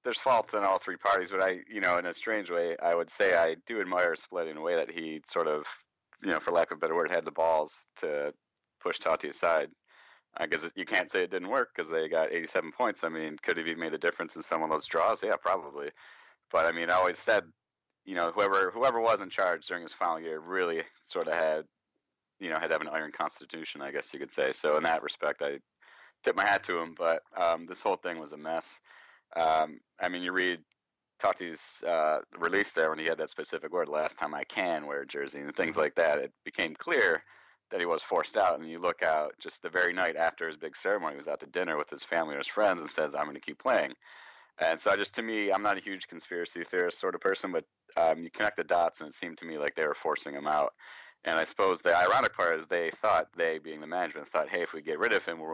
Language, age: English, 30-49